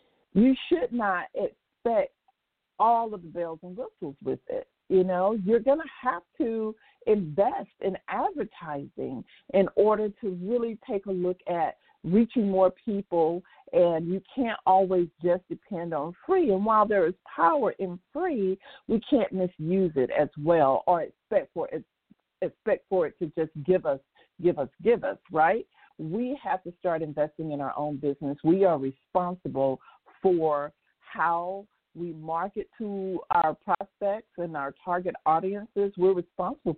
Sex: female